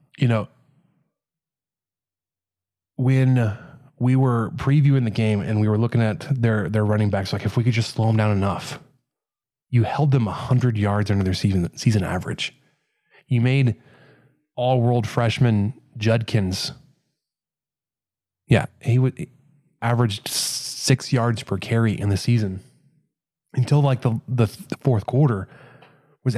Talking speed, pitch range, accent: 135 wpm, 105-130 Hz, American